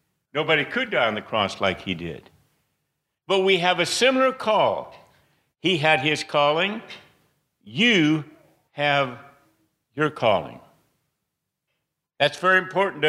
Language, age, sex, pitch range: English, 60-79, male, 140-175 Hz